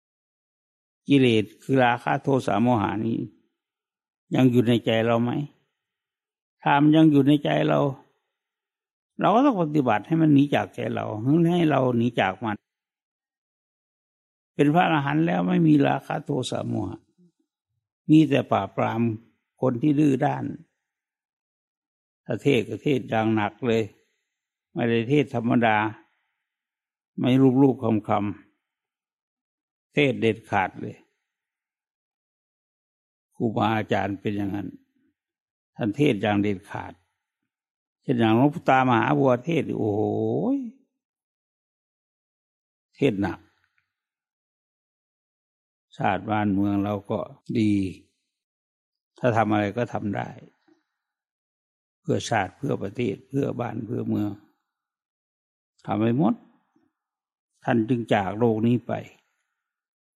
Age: 60-79